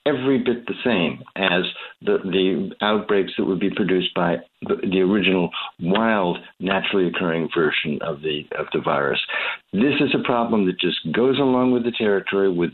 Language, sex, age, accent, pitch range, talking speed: English, male, 60-79, American, 95-120 Hz, 175 wpm